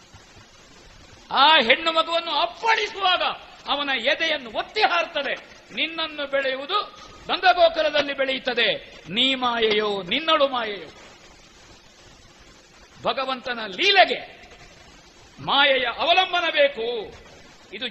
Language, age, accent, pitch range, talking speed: Kannada, 50-69, native, 245-325 Hz, 75 wpm